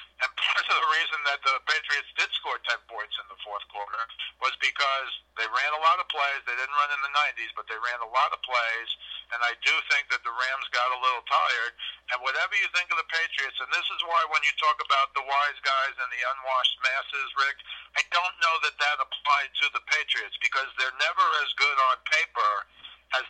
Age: 50-69